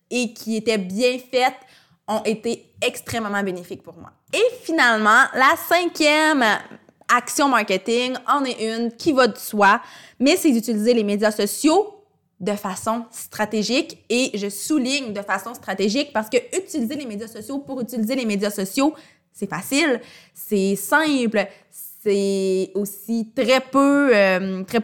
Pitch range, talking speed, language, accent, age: 205-260 Hz, 145 wpm, French, Canadian, 20-39